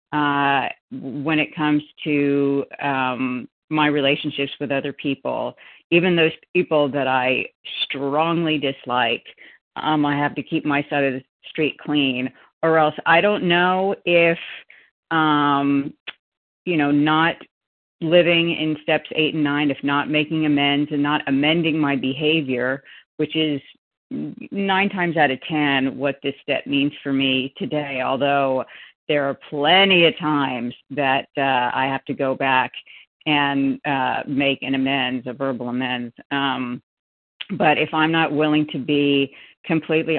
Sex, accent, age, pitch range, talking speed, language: female, American, 40-59, 140-155 Hz, 145 wpm, English